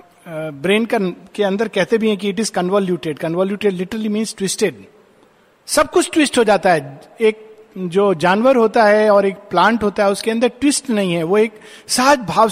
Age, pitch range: 50-69, 175-235 Hz